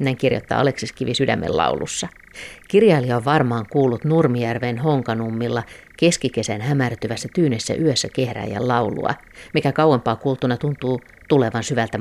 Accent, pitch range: native, 120-145 Hz